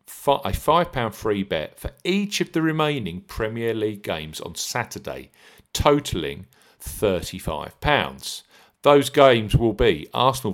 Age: 40-59